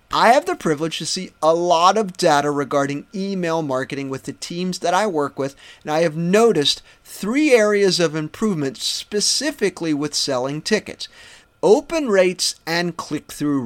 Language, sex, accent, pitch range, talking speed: English, male, American, 150-195 Hz, 160 wpm